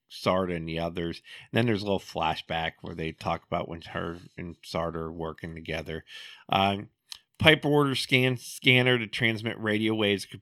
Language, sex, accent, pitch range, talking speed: English, male, American, 85-110 Hz, 180 wpm